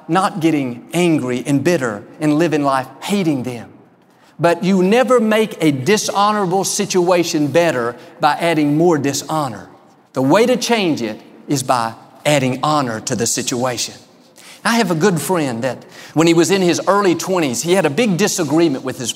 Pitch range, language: 150-185 Hz, English